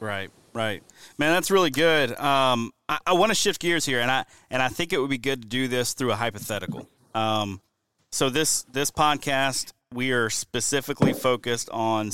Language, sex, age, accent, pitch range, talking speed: English, male, 30-49, American, 105-130 Hz, 195 wpm